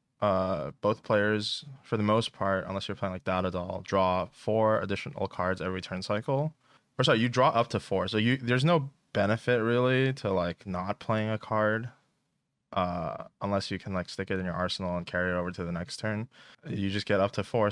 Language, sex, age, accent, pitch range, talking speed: English, male, 20-39, American, 90-110 Hz, 210 wpm